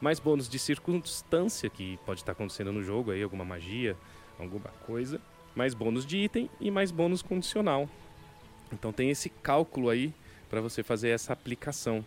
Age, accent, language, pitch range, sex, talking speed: 20-39, Brazilian, Portuguese, 105-135 Hz, male, 165 wpm